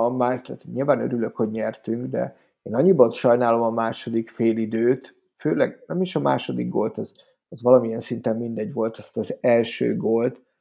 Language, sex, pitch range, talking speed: Hungarian, male, 115-135 Hz, 165 wpm